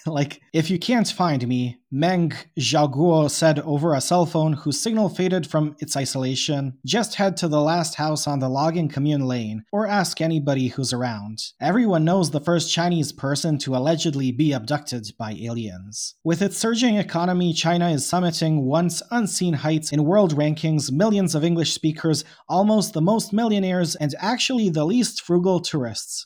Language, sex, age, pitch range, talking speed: English, male, 30-49, 140-175 Hz, 170 wpm